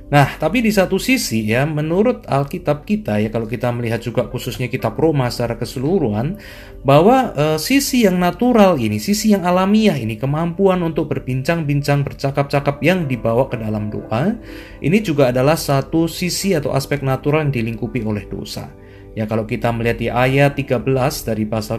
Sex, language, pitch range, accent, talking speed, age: male, Indonesian, 110-150 Hz, native, 165 wpm, 30-49